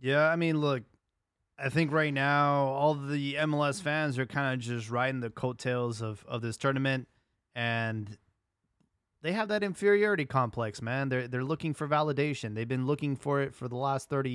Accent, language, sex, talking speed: American, English, male, 185 wpm